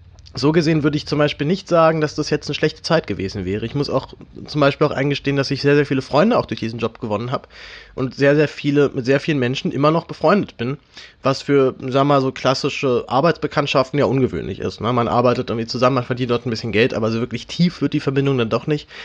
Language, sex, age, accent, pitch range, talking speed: German, male, 30-49, German, 125-145 Hz, 250 wpm